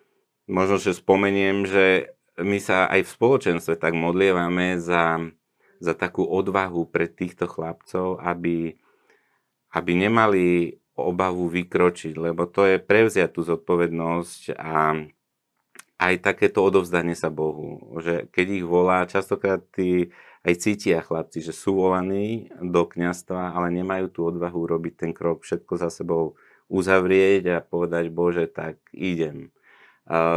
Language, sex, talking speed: Slovak, male, 125 wpm